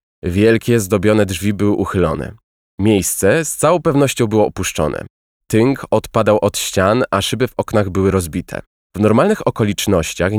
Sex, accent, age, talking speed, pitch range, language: male, native, 20-39, 140 wpm, 85-115 Hz, Polish